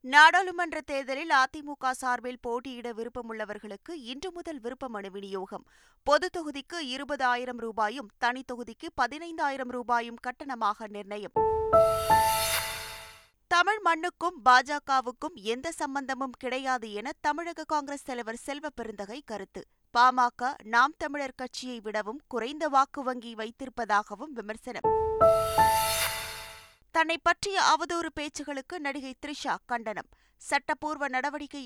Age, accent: 20-39, native